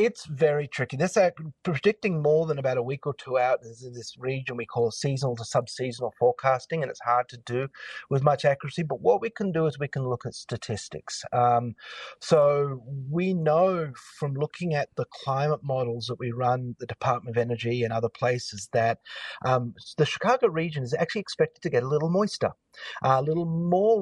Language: English